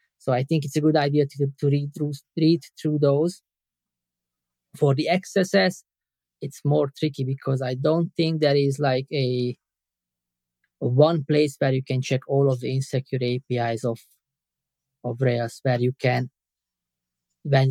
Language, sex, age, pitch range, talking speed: English, male, 20-39, 130-150 Hz, 160 wpm